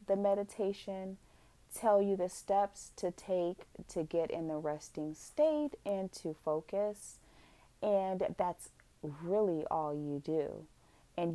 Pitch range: 165-200 Hz